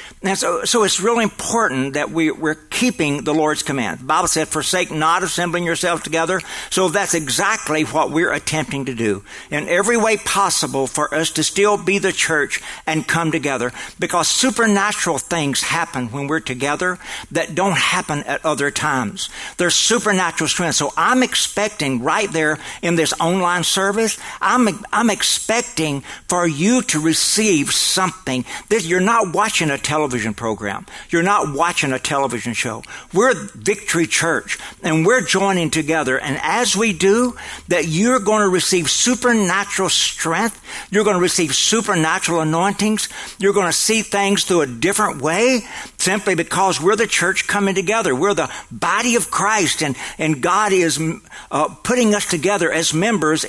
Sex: male